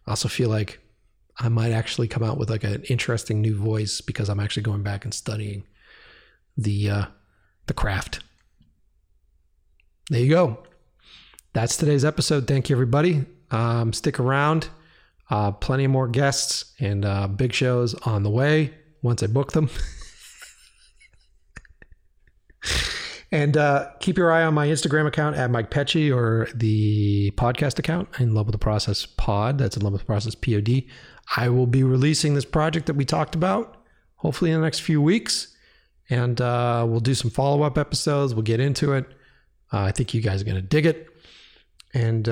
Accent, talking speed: American, 170 wpm